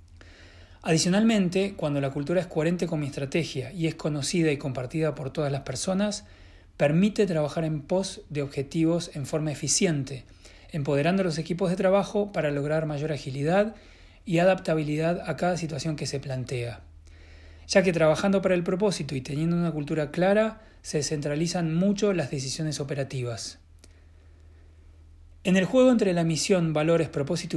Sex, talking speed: male, 150 wpm